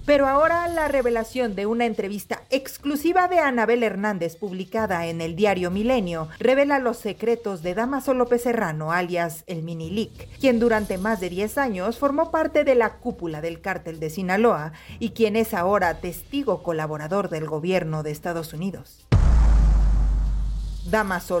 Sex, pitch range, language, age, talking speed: female, 175-255 Hz, Spanish, 40-59, 150 wpm